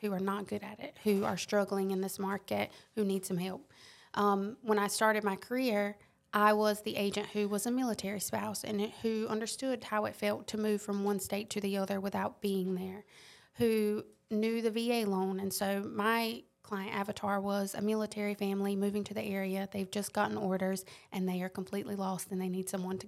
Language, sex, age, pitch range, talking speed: English, female, 20-39, 195-215 Hz, 210 wpm